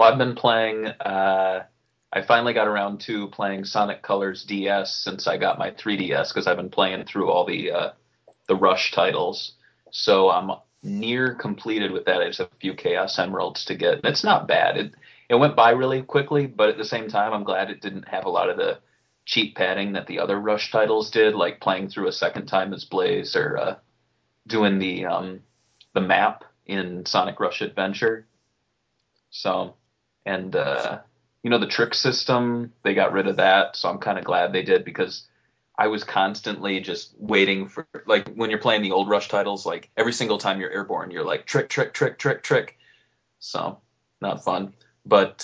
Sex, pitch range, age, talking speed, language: male, 100-130 Hz, 30-49, 195 wpm, English